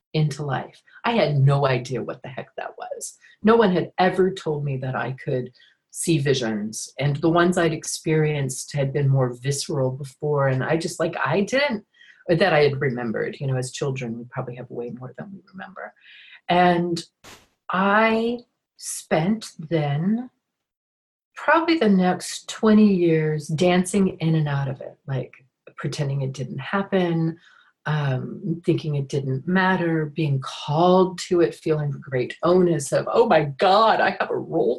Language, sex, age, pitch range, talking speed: English, female, 40-59, 150-215 Hz, 165 wpm